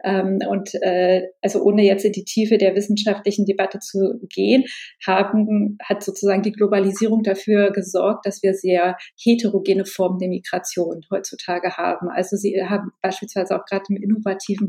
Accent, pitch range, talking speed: German, 190-210 Hz, 155 wpm